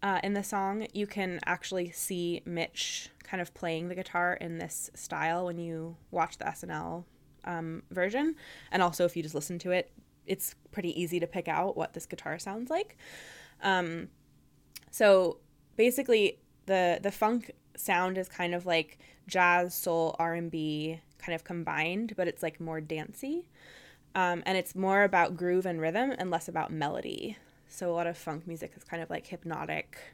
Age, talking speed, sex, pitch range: 20-39, 175 wpm, female, 165-195 Hz